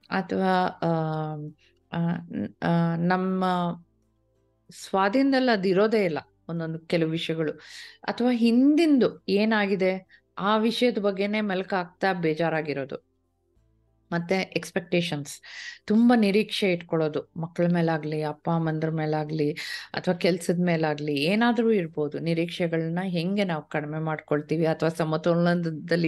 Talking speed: 95 wpm